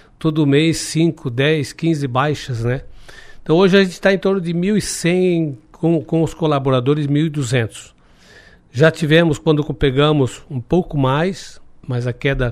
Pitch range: 130-160 Hz